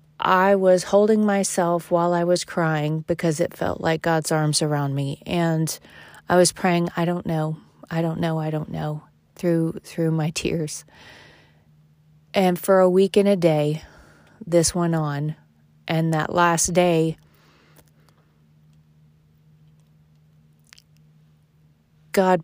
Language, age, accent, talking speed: English, 30-49, American, 130 wpm